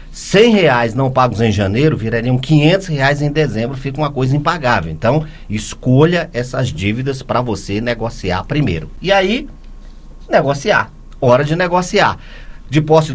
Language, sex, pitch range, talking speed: Portuguese, male, 105-150 Hz, 140 wpm